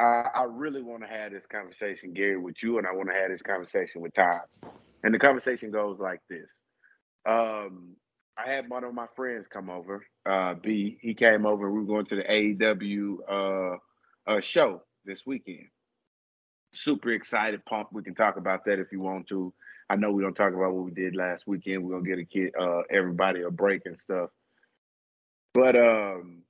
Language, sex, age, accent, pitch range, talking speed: English, male, 30-49, American, 100-150 Hz, 195 wpm